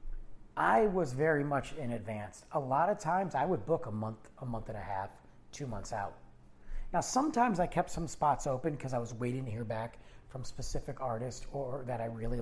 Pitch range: 115-165 Hz